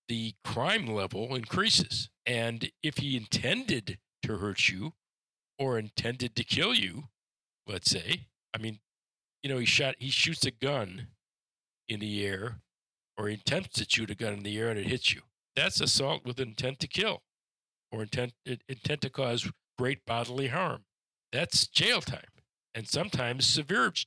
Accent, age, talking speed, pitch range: American, 50-69, 160 wpm, 110-140 Hz